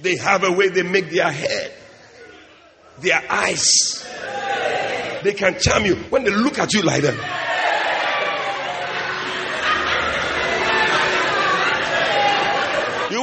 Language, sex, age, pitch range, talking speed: English, male, 50-69, 180-250 Hz, 100 wpm